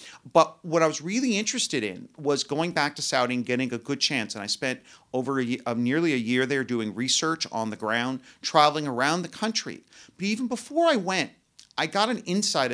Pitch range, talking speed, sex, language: 130-175 Hz, 205 wpm, male, English